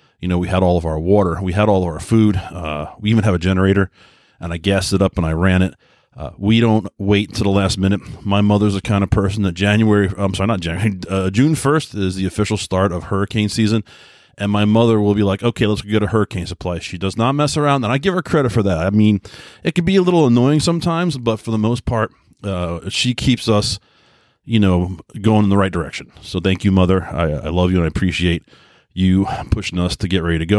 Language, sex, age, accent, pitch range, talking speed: English, male, 30-49, American, 95-110 Hz, 245 wpm